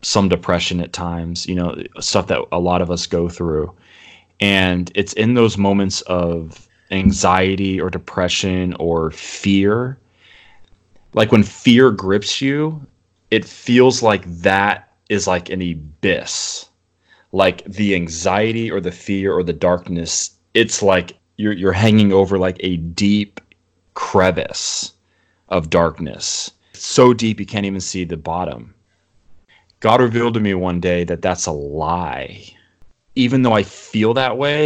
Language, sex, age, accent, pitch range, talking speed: English, male, 30-49, American, 90-105 Hz, 145 wpm